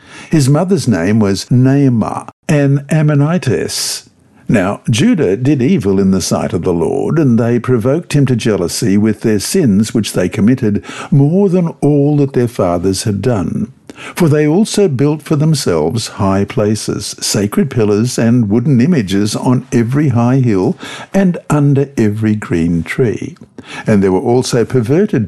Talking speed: 150 wpm